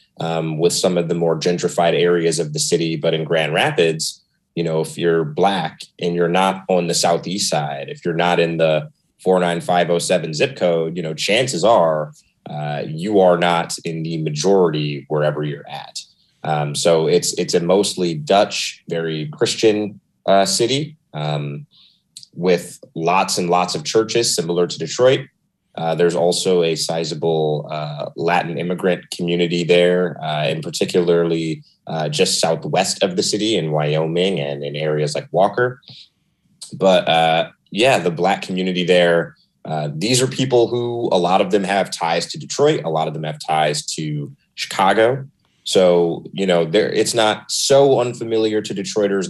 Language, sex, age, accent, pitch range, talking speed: English, male, 30-49, American, 80-95 Hz, 160 wpm